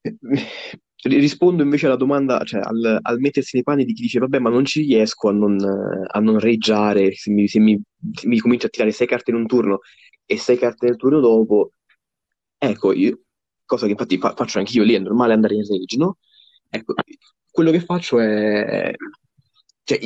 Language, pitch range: Italian, 110-135 Hz